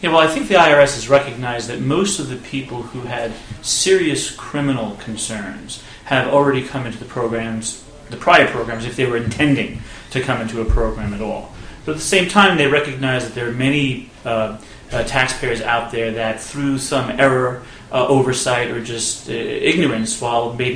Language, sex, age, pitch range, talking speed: English, male, 30-49, 115-140 Hz, 190 wpm